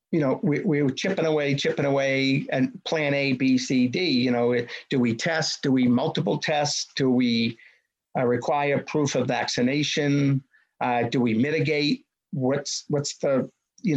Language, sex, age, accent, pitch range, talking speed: English, male, 50-69, American, 130-160 Hz, 170 wpm